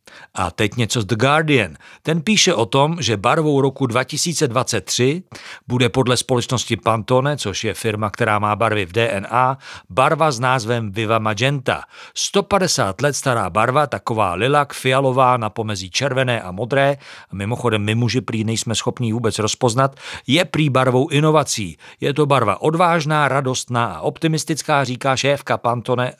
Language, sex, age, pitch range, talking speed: Czech, male, 50-69, 115-145 Hz, 150 wpm